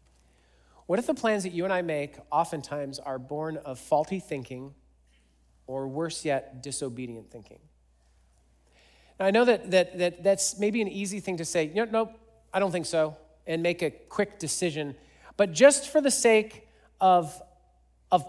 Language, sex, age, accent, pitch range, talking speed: English, male, 40-59, American, 130-190 Hz, 170 wpm